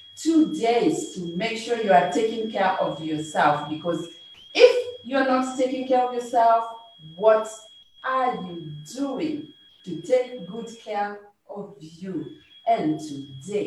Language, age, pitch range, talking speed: English, 40-59, 165-260 Hz, 135 wpm